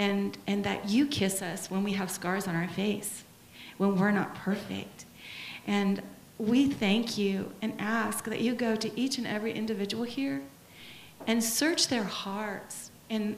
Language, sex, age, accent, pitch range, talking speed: English, female, 40-59, American, 205-235 Hz, 165 wpm